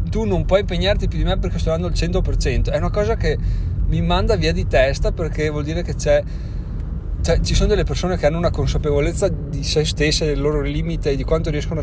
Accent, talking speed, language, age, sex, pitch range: native, 230 wpm, Italian, 30-49, male, 115-145 Hz